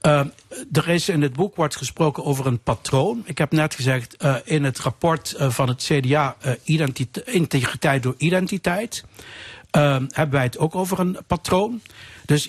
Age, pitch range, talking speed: 60-79, 140-180 Hz, 170 wpm